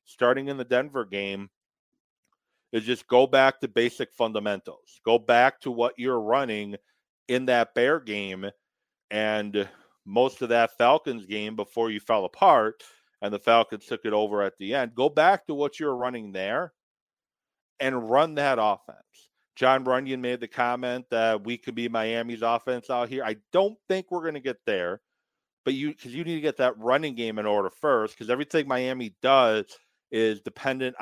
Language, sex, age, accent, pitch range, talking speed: English, male, 40-59, American, 110-135 Hz, 175 wpm